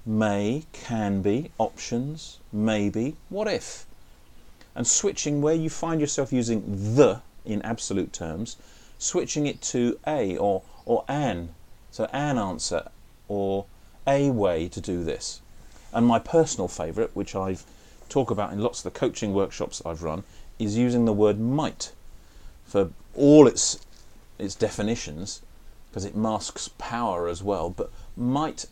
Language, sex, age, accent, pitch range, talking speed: English, male, 40-59, British, 95-120 Hz, 140 wpm